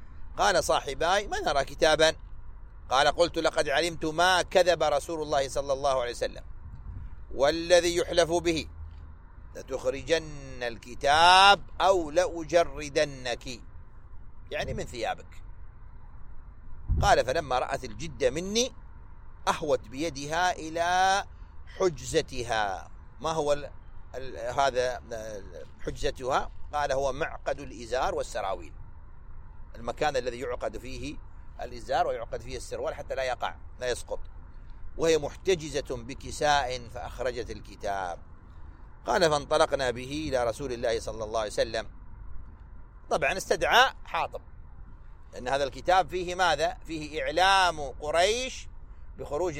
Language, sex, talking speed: Arabic, male, 105 wpm